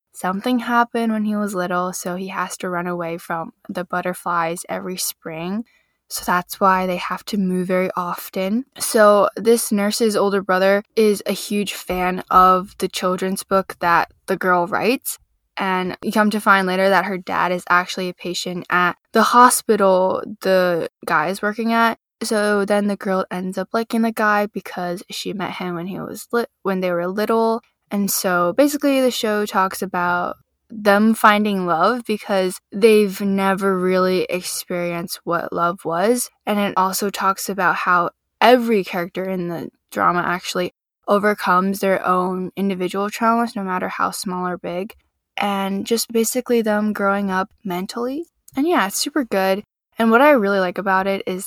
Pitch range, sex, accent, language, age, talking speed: 180-220 Hz, female, American, English, 10-29, 170 wpm